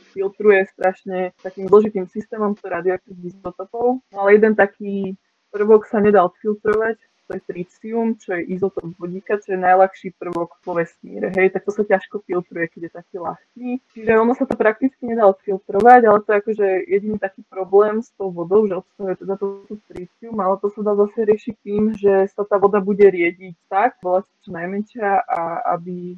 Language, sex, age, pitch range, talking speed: Slovak, female, 20-39, 185-215 Hz, 180 wpm